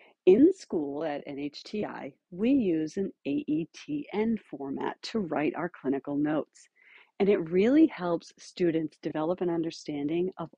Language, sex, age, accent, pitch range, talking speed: English, female, 50-69, American, 155-205 Hz, 130 wpm